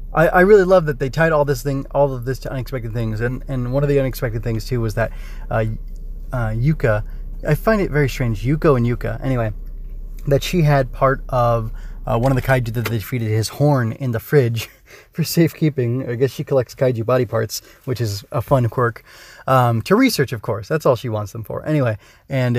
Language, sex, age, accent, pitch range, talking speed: English, male, 20-39, American, 115-140 Hz, 220 wpm